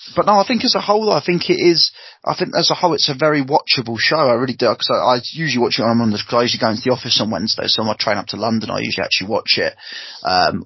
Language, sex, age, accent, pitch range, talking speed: English, male, 20-39, British, 115-140 Hz, 310 wpm